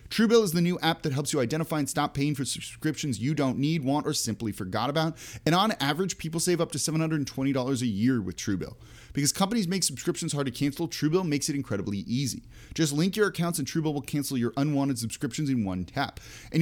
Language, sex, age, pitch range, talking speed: English, male, 30-49, 115-155 Hz, 220 wpm